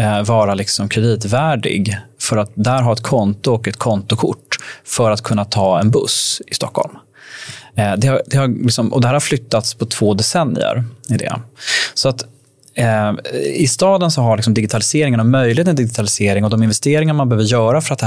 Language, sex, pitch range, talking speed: Swedish, male, 105-125 Hz, 165 wpm